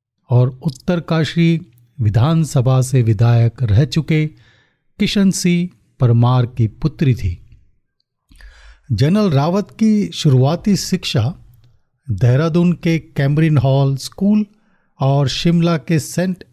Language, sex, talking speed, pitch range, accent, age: Hindi, male, 95 wpm, 125-170 Hz, native, 40-59